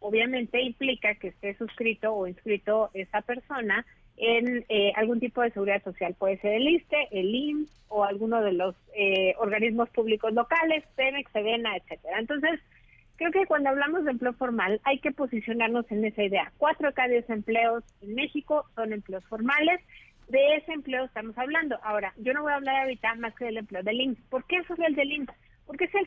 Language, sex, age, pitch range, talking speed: Spanish, female, 40-59, 215-285 Hz, 190 wpm